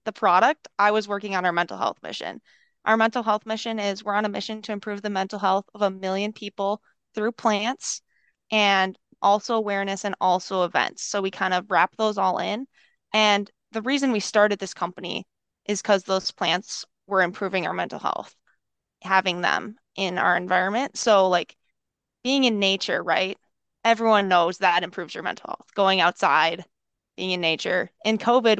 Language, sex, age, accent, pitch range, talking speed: English, female, 20-39, American, 190-220 Hz, 175 wpm